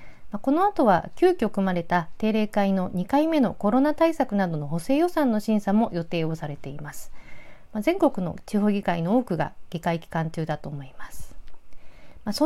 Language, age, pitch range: Japanese, 40-59, 170-275 Hz